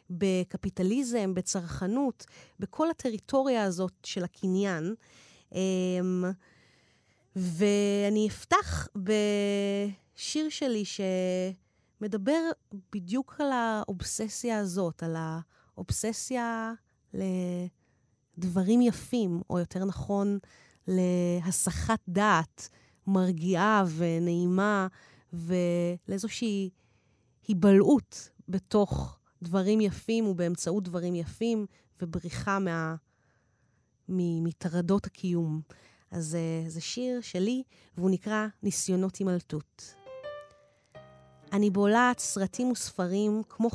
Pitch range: 175-215 Hz